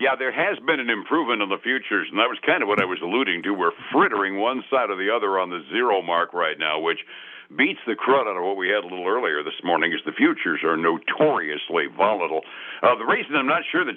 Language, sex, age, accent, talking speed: English, male, 60-79, American, 255 wpm